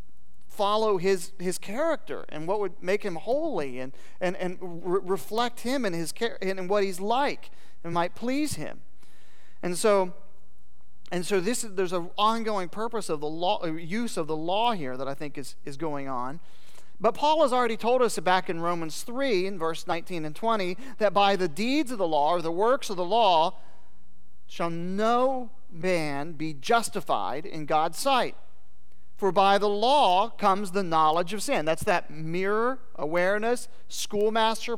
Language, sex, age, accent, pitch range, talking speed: English, male, 40-59, American, 155-220 Hz, 175 wpm